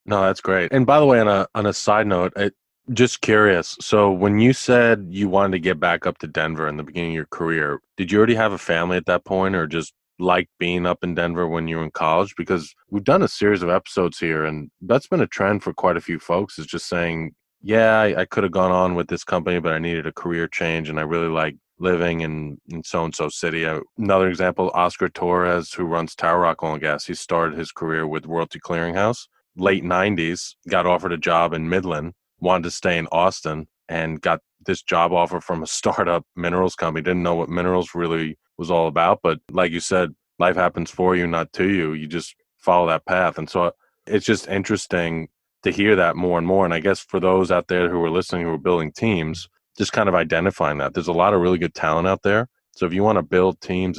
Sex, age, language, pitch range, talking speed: male, 20-39, English, 80-95 Hz, 235 wpm